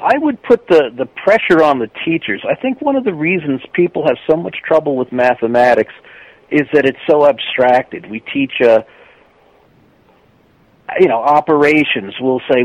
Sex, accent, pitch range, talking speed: male, American, 125-160 Hz, 165 wpm